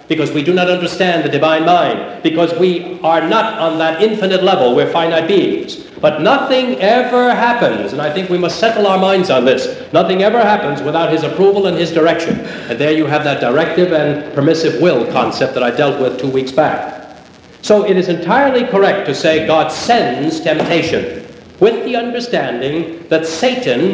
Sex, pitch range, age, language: male, 155-205 Hz, 60-79, English